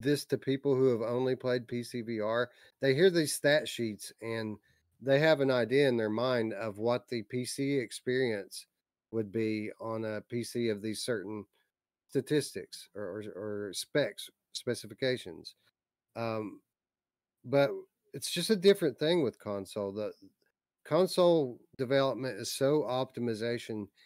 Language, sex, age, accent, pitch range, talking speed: English, male, 40-59, American, 105-135 Hz, 140 wpm